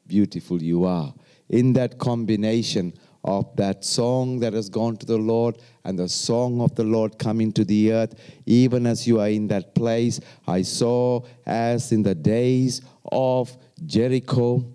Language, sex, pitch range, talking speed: English, male, 105-125 Hz, 165 wpm